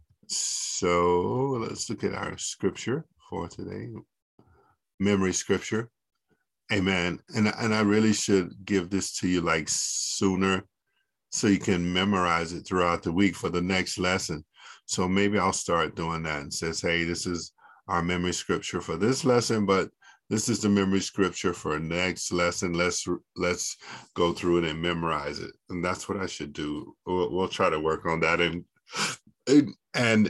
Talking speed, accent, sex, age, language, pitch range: 165 wpm, American, male, 50-69, English, 85-105 Hz